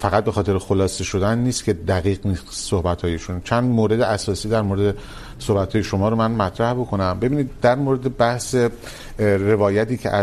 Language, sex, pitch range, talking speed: Urdu, male, 95-115 Hz, 160 wpm